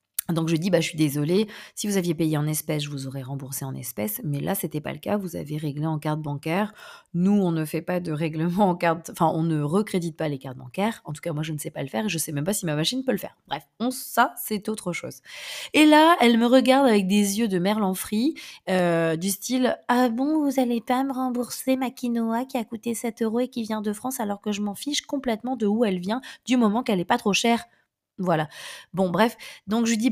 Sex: female